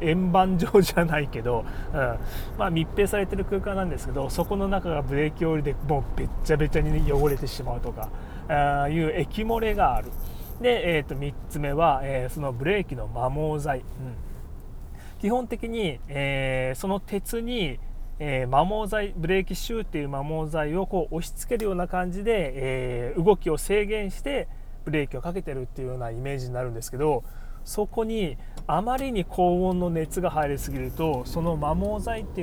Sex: male